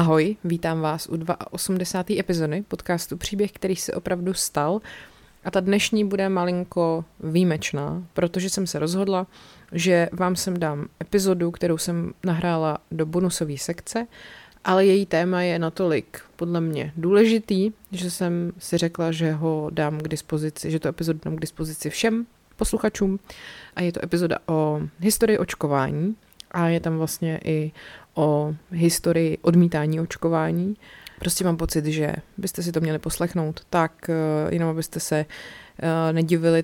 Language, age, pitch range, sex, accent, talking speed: Czech, 30-49, 155-180 Hz, female, native, 145 wpm